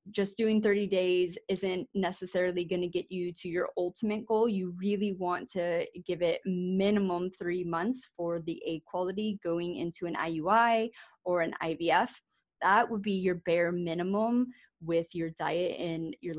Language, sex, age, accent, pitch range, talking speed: English, female, 20-39, American, 175-205 Hz, 160 wpm